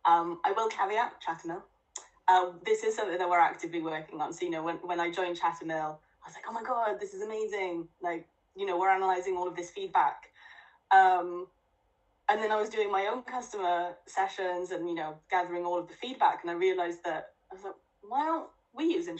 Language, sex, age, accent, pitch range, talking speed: English, female, 10-29, British, 170-255 Hz, 215 wpm